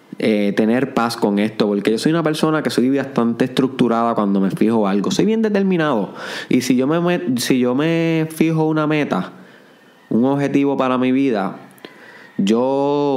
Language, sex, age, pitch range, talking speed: Spanish, male, 20-39, 115-160 Hz, 160 wpm